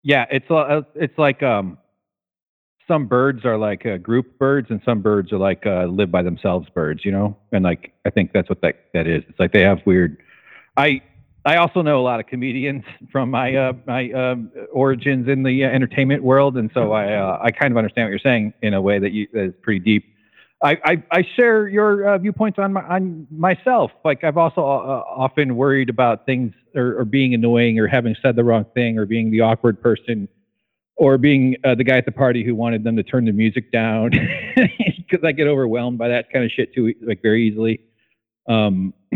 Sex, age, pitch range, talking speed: male, 40-59, 110-140 Hz, 215 wpm